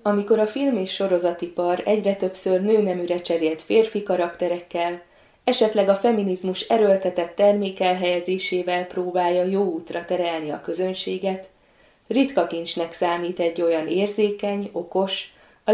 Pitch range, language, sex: 170-210 Hz, Hungarian, female